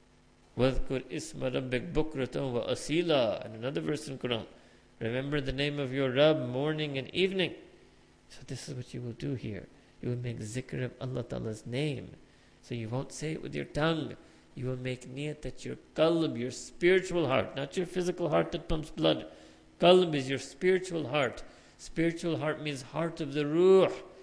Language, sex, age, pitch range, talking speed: English, male, 50-69, 130-165 Hz, 180 wpm